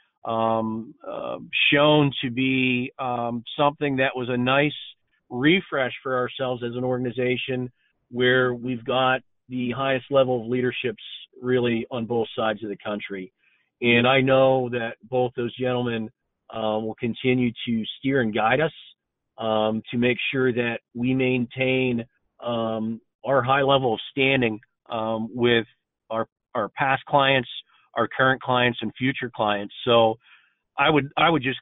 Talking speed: 150 wpm